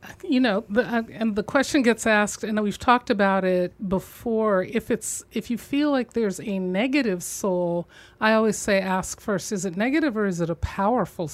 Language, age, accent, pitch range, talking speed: English, 40-59, American, 185-225 Hz, 200 wpm